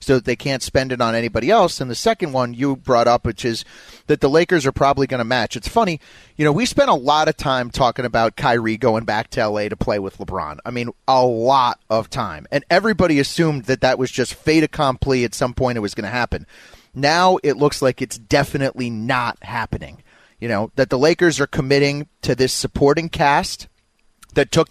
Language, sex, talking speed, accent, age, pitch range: English, male, 220 wpm, American, 30-49, 125-155 Hz